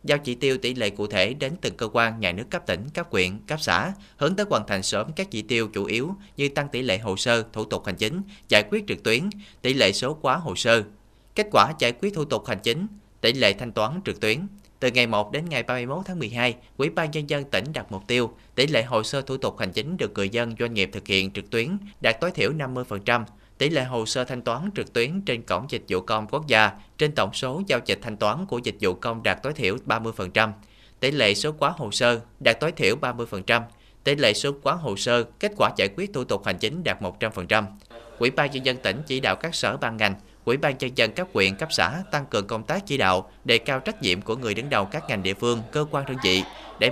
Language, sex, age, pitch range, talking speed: Vietnamese, male, 30-49, 110-150 Hz, 255 wpm